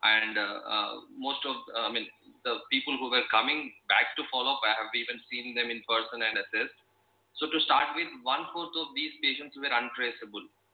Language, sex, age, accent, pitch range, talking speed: English, male, 30-49, Indian, 115-140 Hz, 190 wpm